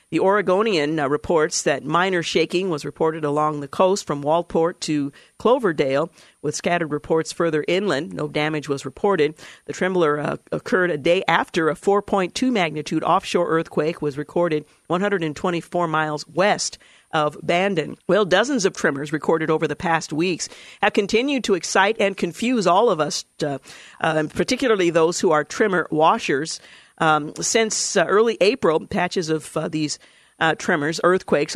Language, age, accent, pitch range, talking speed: English, 50-69, American, 155-190 Hz, 155 wpm